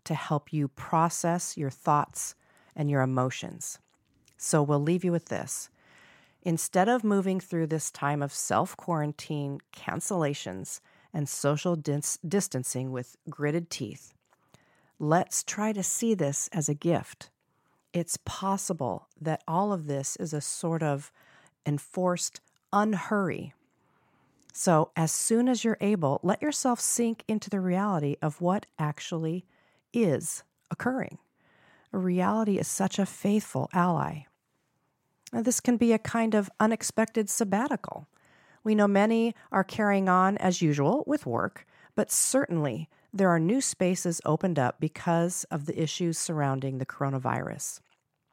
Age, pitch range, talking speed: 40-59, 145-195 Hz, 135 wpm